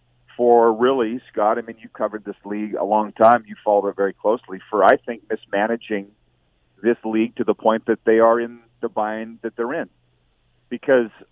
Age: 40-59